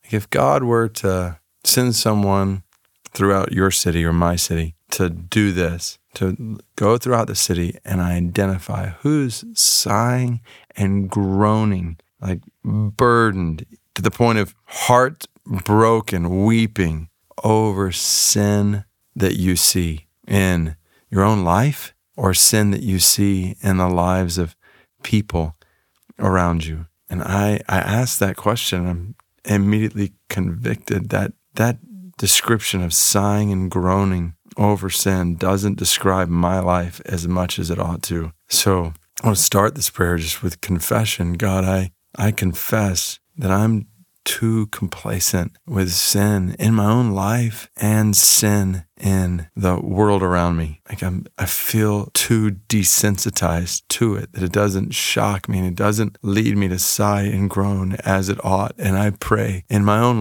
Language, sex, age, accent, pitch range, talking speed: English, male, 40-59, American, 90-110 Hz, 145 wpm